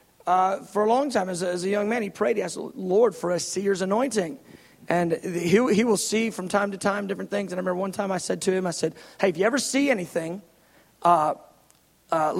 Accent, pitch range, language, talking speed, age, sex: American, 170-220 Hz, English, 235 wpm, 40-59, male